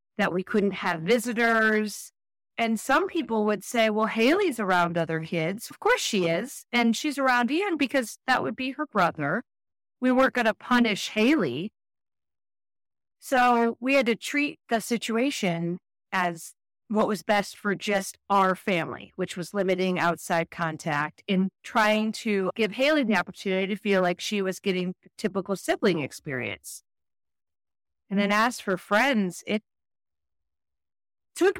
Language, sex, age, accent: English, female, 40-59, American